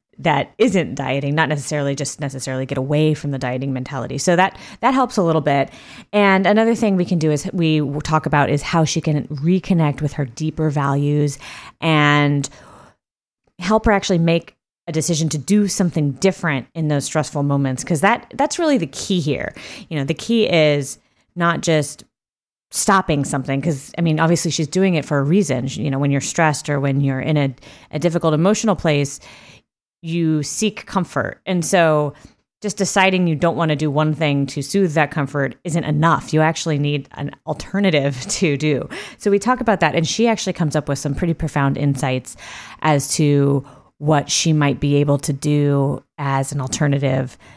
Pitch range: 140-175 Hz